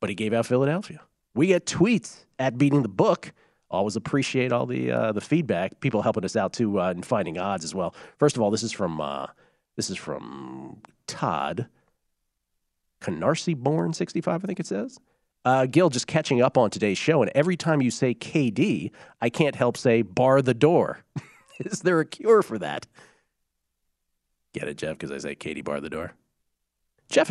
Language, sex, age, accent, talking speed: English, male, 40-59, American, 190 wpm